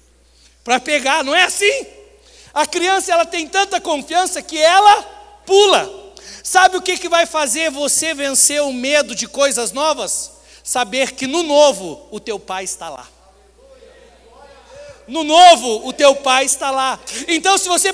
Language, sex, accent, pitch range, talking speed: Portuguese, male, Brazilian, 235-340 Hz, 155 wpm